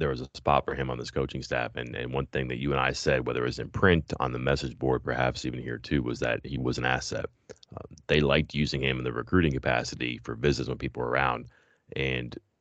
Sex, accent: male, American